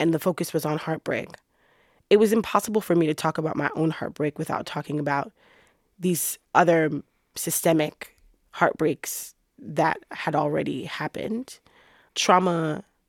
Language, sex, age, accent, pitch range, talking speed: English, female, 20-39, American, 155-180 Hz, 135 wpm